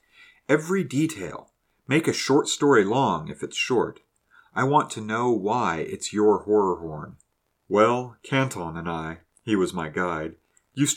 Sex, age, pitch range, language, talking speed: male, 40-59, 90-120 Hz, English, 140 wpm